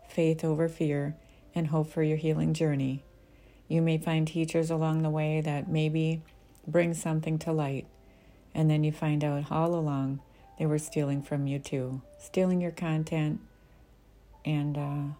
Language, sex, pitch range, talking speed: English, female, 145-165 Hz, 160 wpm